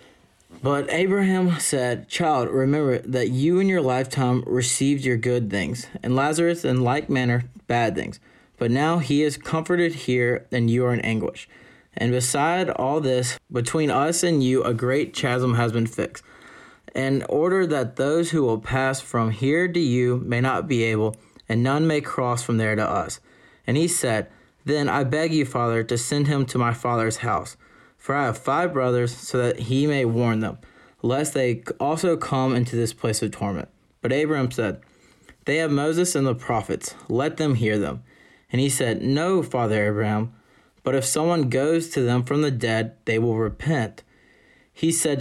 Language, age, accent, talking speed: English, 20-39, American, 180 wpm